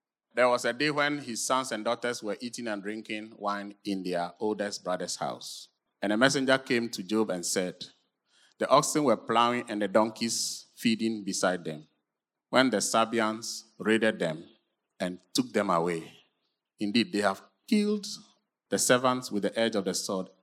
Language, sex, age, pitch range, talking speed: English, male, 30-49, 110-155 Hz, 170 wpm